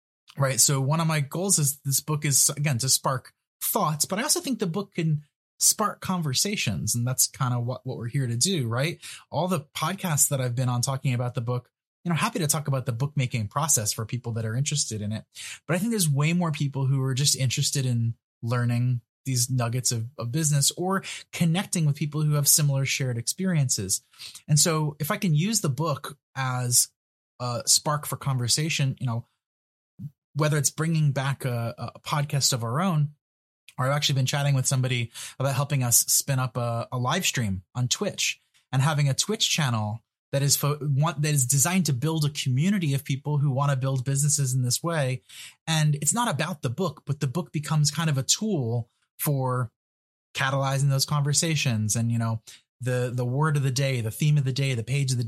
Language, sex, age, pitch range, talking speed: English, male, 20-39, 125-155 Hz, 210 wpm